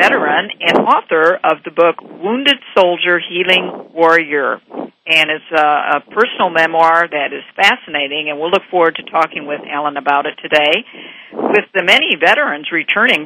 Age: 50-69